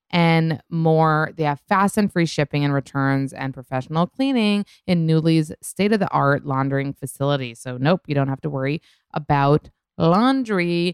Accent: American